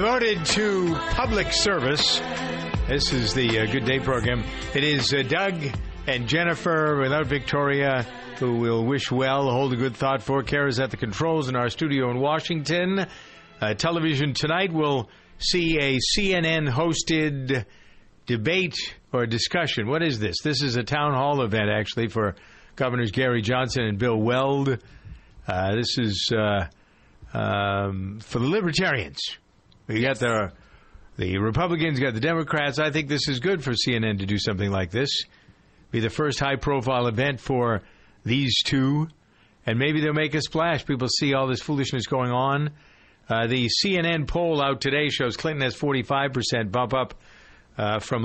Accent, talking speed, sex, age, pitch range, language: American, 165 wpm, male, 50-69, 115-145 Hz, English